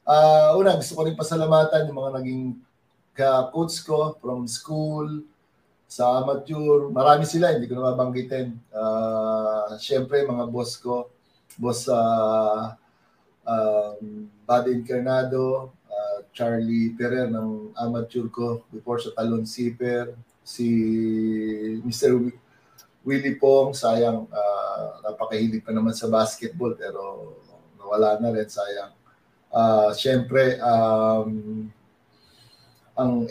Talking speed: 110 wpm